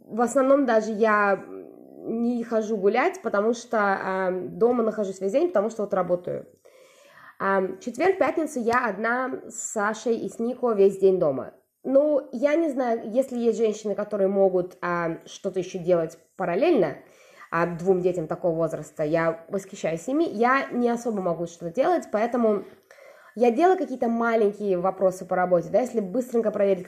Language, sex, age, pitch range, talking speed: Russian, female, 20-39, 190-255 Hz, 155 wpm